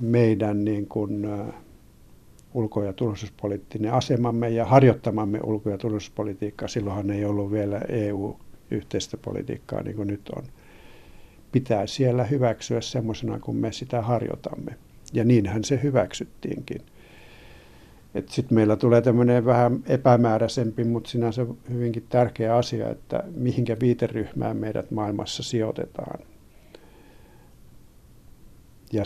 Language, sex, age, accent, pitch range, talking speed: Finnish, male, 60-79, native, 100-120 Hz, 105 wpm